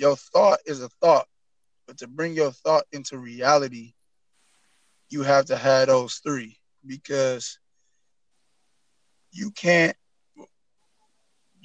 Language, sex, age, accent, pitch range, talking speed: English, male, 20-39, American, 130-155 Hz, 110 wpm